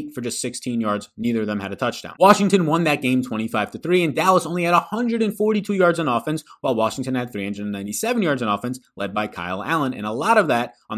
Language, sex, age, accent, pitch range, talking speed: English, male, 20-39, American, 115-165 Hz, 230 wpm